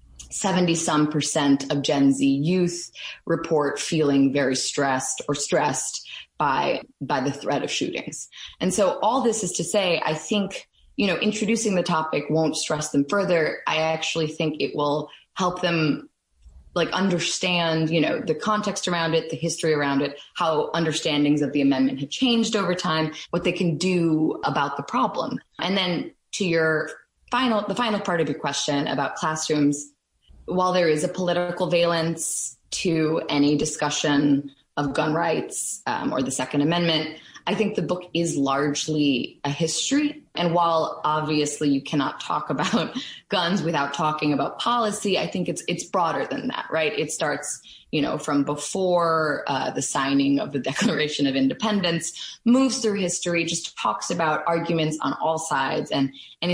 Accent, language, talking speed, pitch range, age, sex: American, English, 165 wpm, 145-180 Hz, 20-39, female